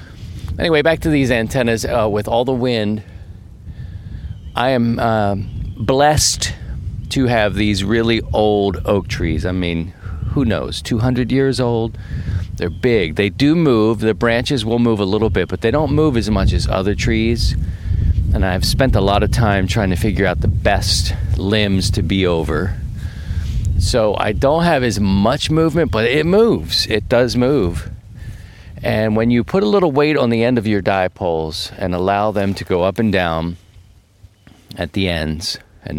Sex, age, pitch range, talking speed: male, 40-59, 90-115 Hz, 175 wpm